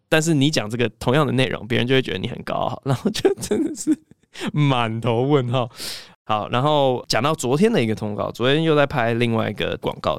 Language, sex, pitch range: Chinese, male, 110-160 Hz